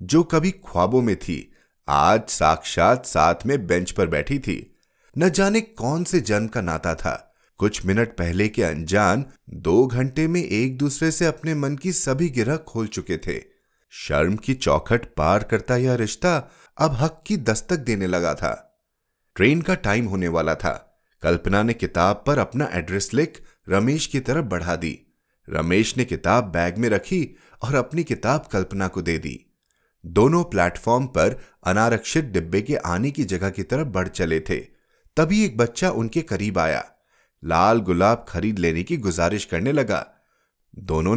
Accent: native